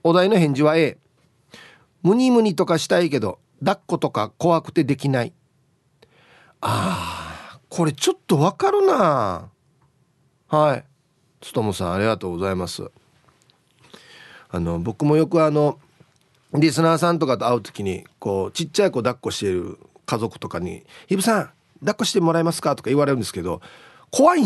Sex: male